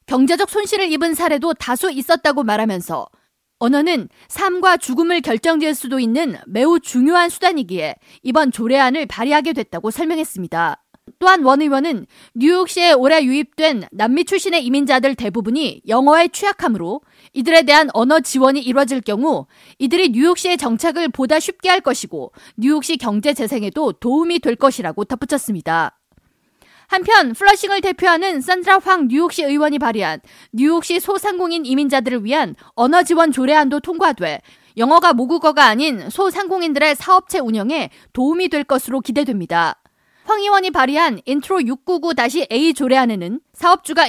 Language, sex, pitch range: Korean, female, 250-340 Hz